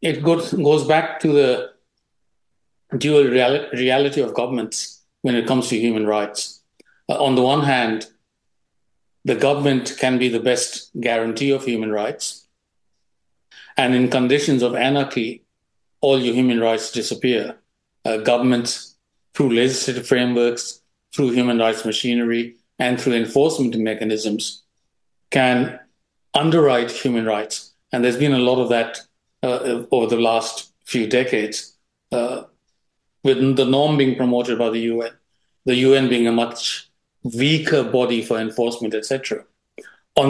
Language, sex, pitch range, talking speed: English, male, 115-135 Hz, 135 wpm